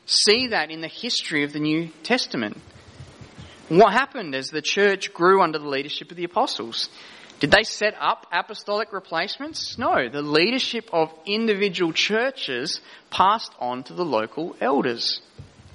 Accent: Australian